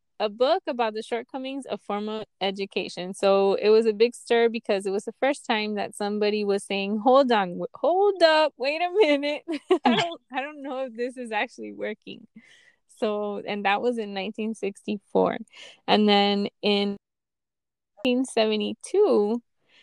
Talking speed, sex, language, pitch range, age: 155 wpm, female, English, 200-235 Hz, 20-39